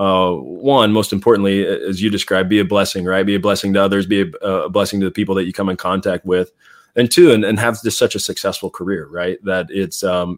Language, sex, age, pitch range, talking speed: English, male, 20-39, 90-105 Hz, 250 wpm